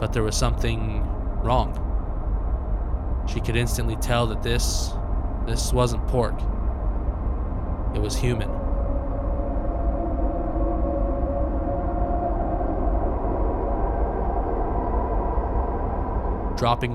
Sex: male